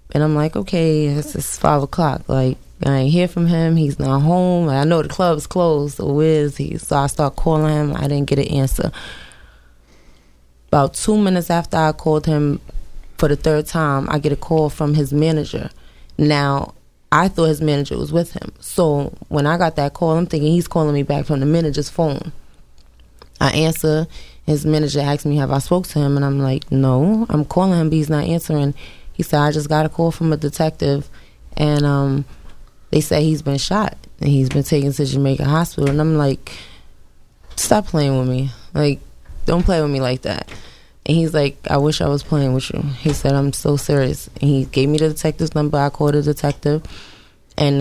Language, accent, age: English, American, 20-39